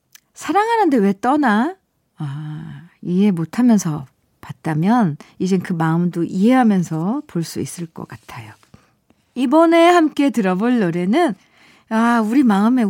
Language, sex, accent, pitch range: Korean, female, native, 175-275 Hz